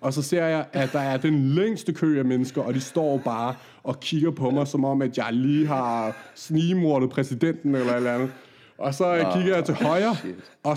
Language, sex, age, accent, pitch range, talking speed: Danish, male, 30-49, native, 135-170 Hz, 210 wpm